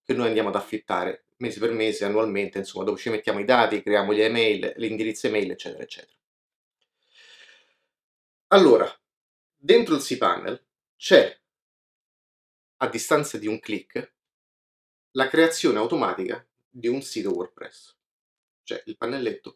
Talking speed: 125 wpm